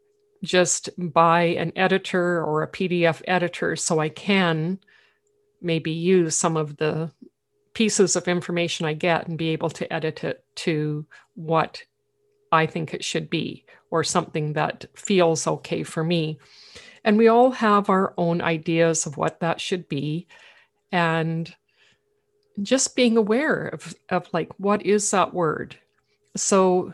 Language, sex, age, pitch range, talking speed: English, female, 50-69, 165-210 Hz, 145 wpm